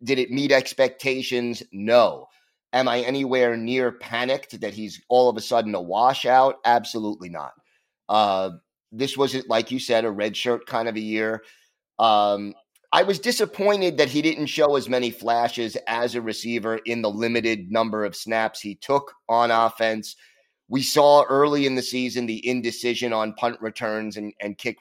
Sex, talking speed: male, 170 wpm